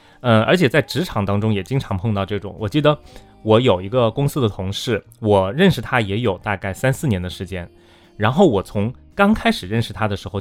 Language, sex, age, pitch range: Chinese, male, 20-39, 95-125 Hz